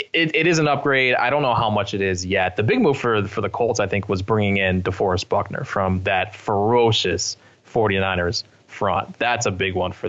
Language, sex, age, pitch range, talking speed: English, male, 20-39, 100-120 Hz, 220 wpm